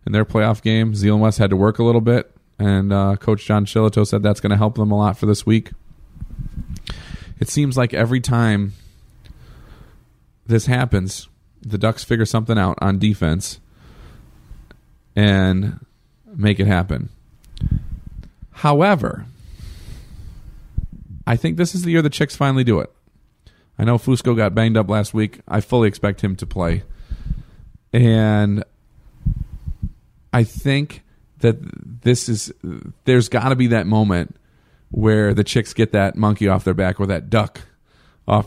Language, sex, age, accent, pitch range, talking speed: English, male, 40-59, American, 95-115 Hz, 150 wpm